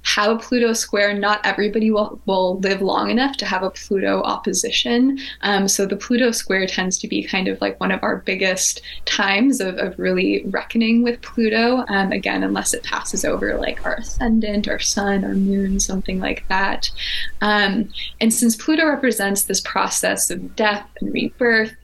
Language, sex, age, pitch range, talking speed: English, female, 20-39, 195-225 Hz, 175 wpm